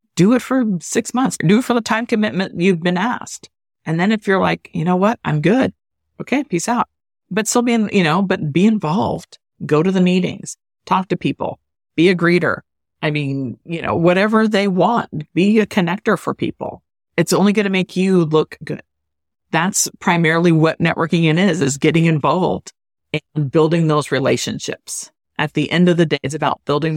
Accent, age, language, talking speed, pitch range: American, 40-59, English, 190 wpm, 150-195 Hz